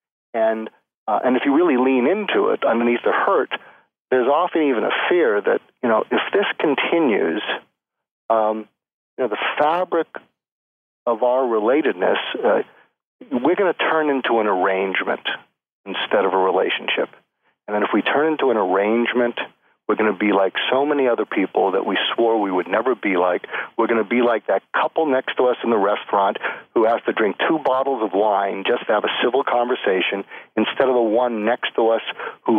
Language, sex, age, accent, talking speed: English, male, 40-59, American, 190 wpm